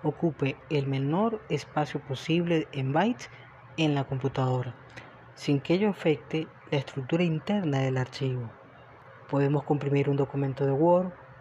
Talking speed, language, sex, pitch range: 130 wpm, Spanish, female, 135-165 Hz